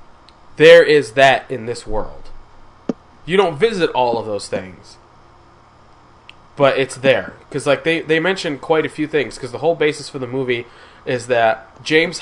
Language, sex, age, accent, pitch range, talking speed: English, male, 20-39, American, 125-165 Hz, 170 wpm